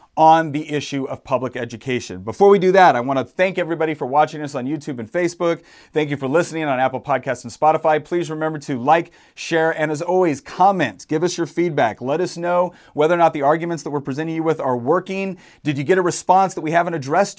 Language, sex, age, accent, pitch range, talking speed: English, male, 30-49, American, 135-170 Hz, 230 wpm